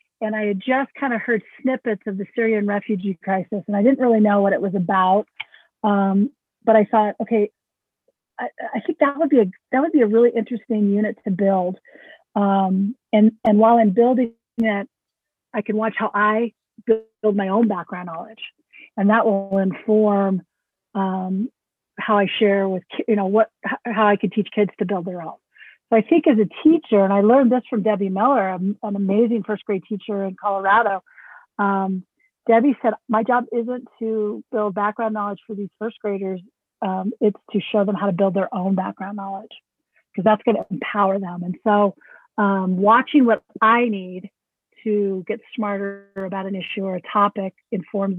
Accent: American